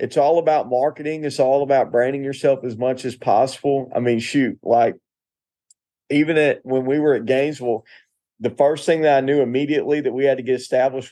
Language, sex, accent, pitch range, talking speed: English, male, American, 130-150 Hz, 200 wpm